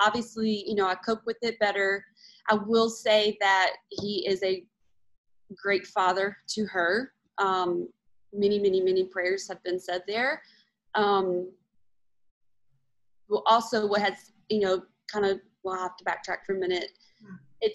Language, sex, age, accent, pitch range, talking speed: English, female, 20-39, American, 185-215 Hz, 150 wpm